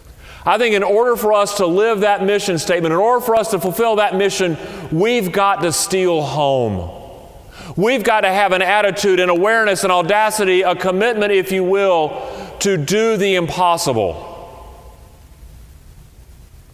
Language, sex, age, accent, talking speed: English, male, 40-59, American, 155 wpm